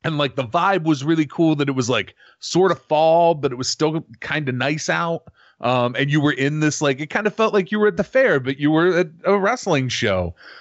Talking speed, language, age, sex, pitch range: 260 wpm, English, 30-49, male, 115-145 Hz